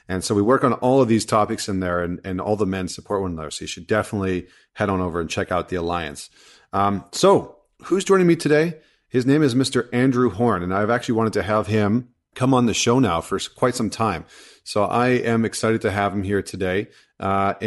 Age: 40-59